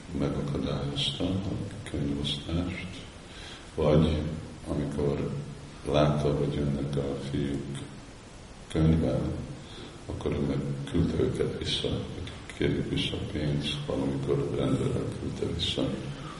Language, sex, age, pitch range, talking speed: Hungarian, male, 50-69, 70-80 Hz, 90 wpm